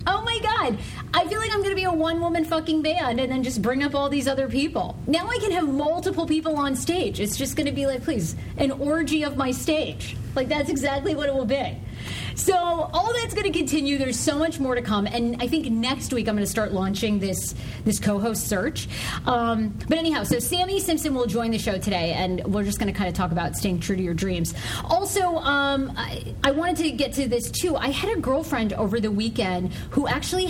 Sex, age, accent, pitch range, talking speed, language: female, 30-49, American, 205-310 Hz, 235 wpm, English